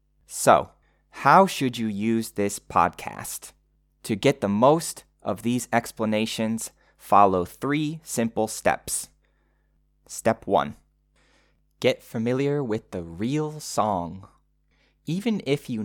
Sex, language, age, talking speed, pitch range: male, English, 20-39, 110 wpm, 95-125 Hz